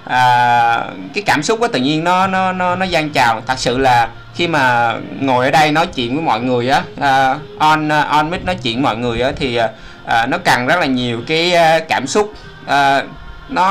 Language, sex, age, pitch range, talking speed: Vietnamese, male, 20-39, 125-175 Hz, 210 wpm